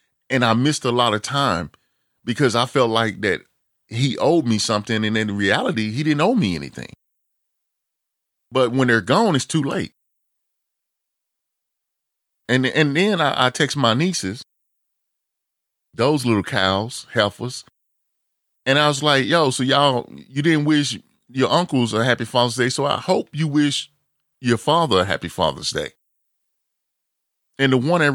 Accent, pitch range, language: American, 110-145 Hz, English